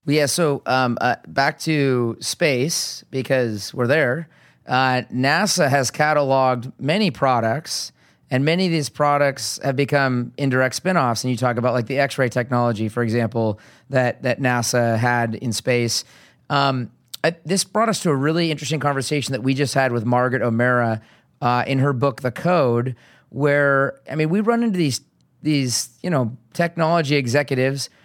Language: English